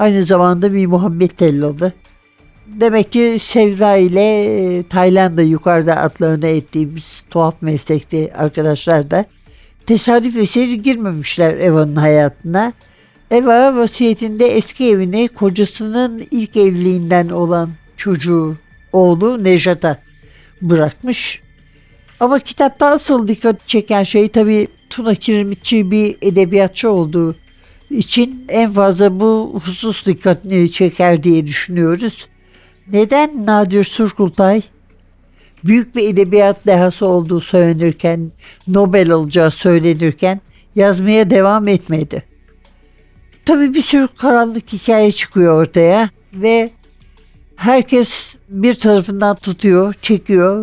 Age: 60-79